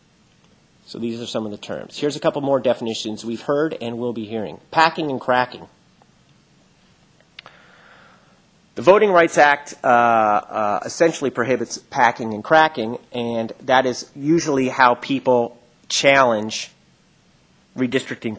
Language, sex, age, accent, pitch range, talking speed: English, male, 30-49, American, 115-140 Hz, 130 wpm